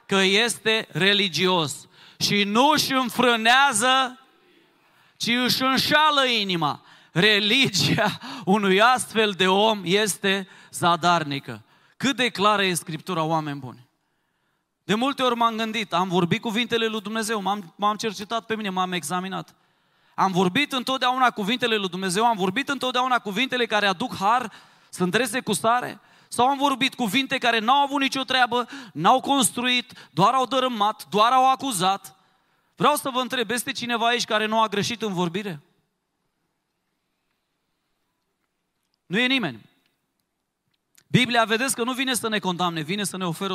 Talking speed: 140 wpm